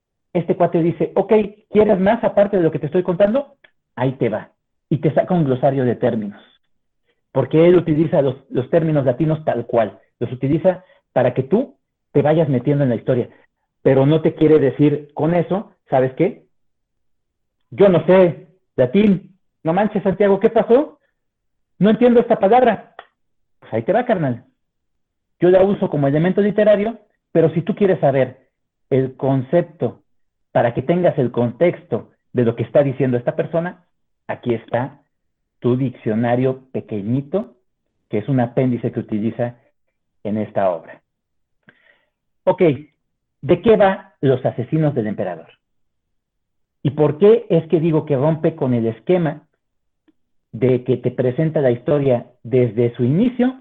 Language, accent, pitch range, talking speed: Spanish, Mexican, 125-185 Hz, 155 wpm